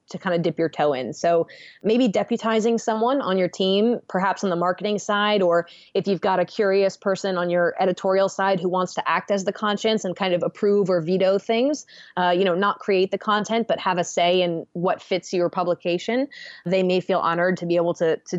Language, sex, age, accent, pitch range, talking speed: English, female, 20-39, American, 170-205 Hz, 225 wpm